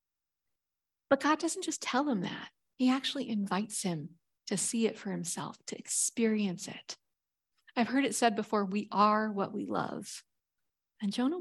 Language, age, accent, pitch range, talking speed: English, 40-59, American, 205-270 Hz, 165 wpm